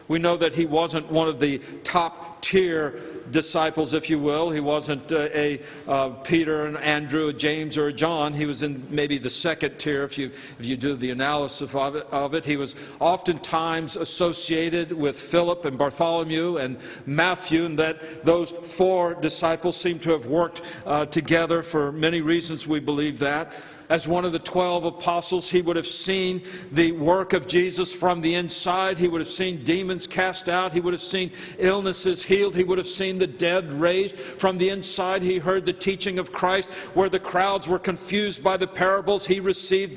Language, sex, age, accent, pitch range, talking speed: English, male, 50-69, American, 160-190 Hz, 190 wpm